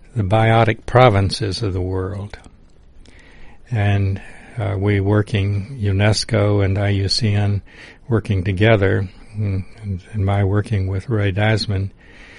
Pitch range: 100-115 Hz